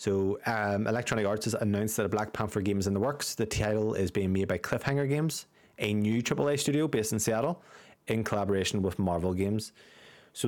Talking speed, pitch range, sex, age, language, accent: 205 wpm, 95-115 Hz, male, 20-39, English, Norwegian